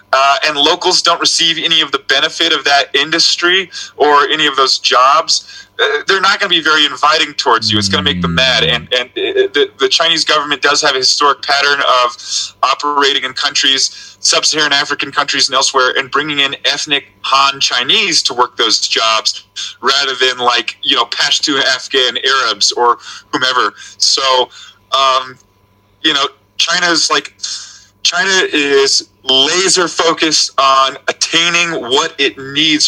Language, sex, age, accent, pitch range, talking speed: English, male, 20-39, American, 120-165 Hz, 160 wpm